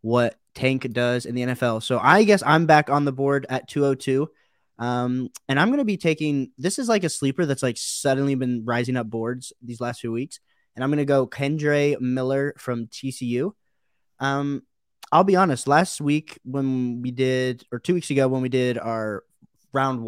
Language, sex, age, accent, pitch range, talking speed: English, male, 20-39, American, 120-140 Hz, 195 wpm